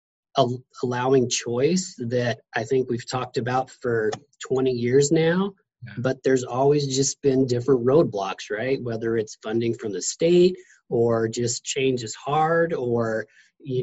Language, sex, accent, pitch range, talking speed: English, male, American, 115-135 Hz, 145 wpm